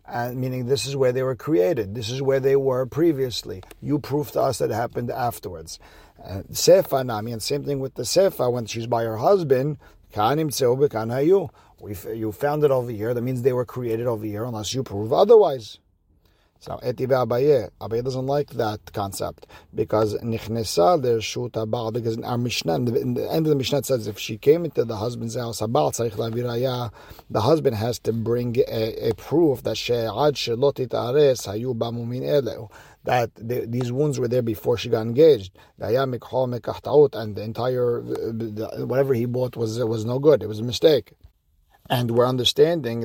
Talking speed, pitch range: 160 wpm, 115-140 Hz